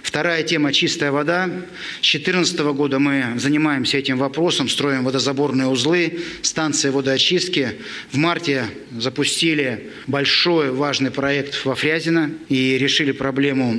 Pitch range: 130-155 Hz